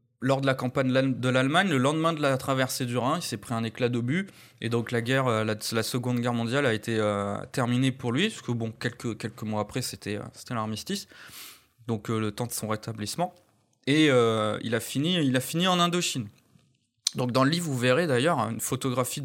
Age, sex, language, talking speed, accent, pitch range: 20-39, male, French, 220 wpm, French, 120-160 Hz